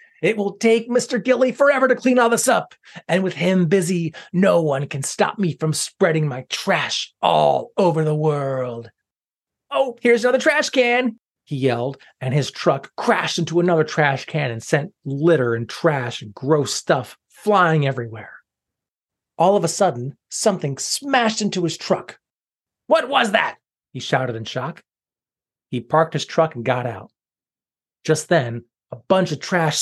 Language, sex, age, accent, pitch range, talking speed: English, male, 30-49, American, 135-195 Hz, 165 wpm